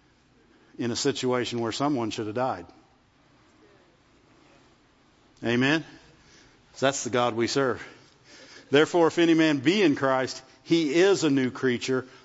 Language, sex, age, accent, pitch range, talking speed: English, male, 50-69, American, 155-230 Hz, 130 wpm